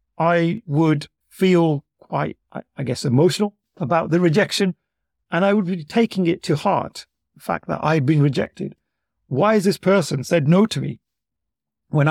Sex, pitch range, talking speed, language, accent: male, 145-195 Hz, 165 wpm, English, British